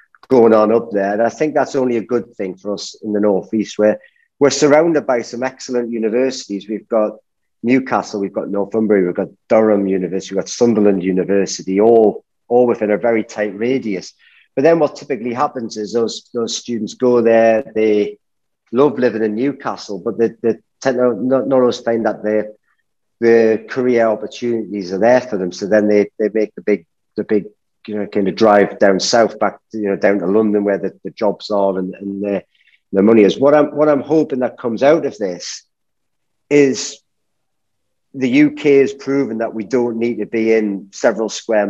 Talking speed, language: 195 wpm, English